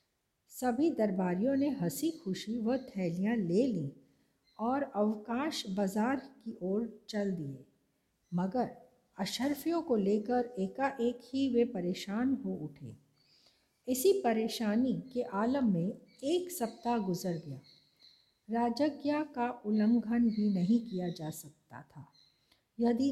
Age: 50-69